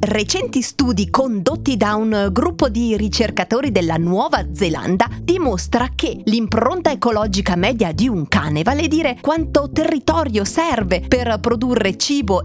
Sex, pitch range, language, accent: female, 200-275 Hz, Italian, native